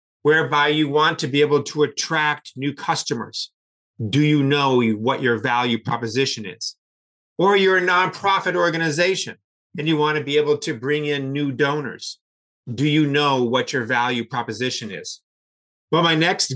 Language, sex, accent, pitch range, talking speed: English, male, American, 130-155 Hz, 165 wpm